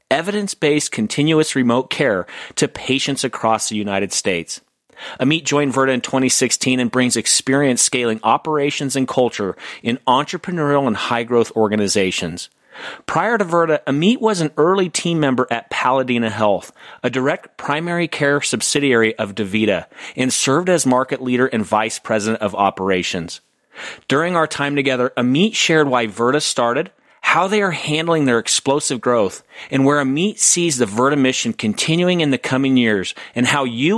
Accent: American